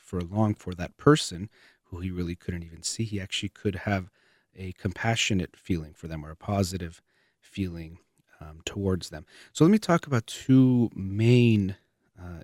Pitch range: 90-110 Hz